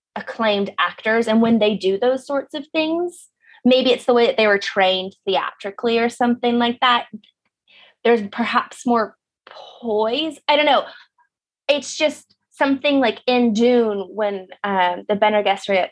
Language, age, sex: English, 20-39, female